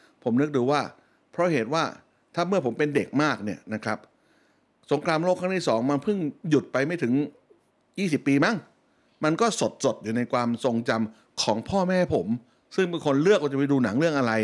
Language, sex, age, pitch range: Thai, male, 60-79, 120-160 Hz